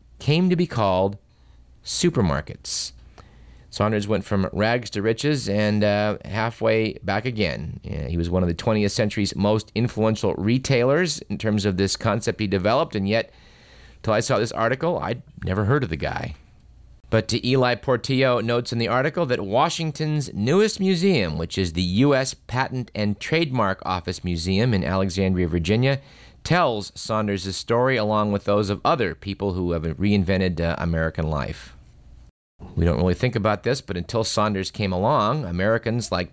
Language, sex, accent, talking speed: English, male, American, 165 wpm